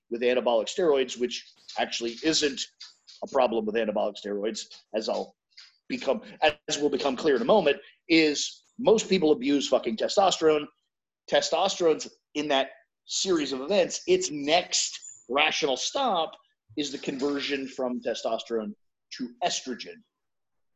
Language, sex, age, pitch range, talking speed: English, male, 40-59, 120-185 Hz, 130 wpm